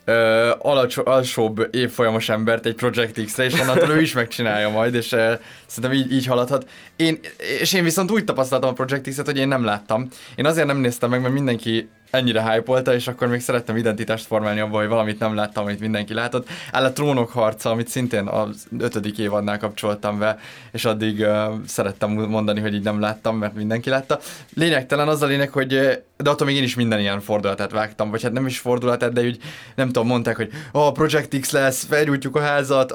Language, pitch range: Hungarian, 110-145 Hz